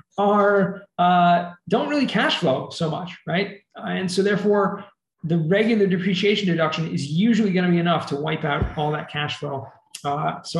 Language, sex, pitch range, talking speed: English, male, 165-205 Hz, 180 wpm